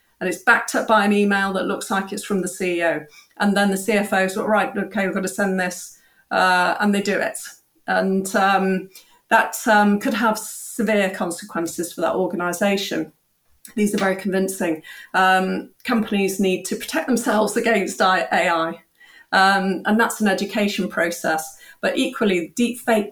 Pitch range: 185-220 Hz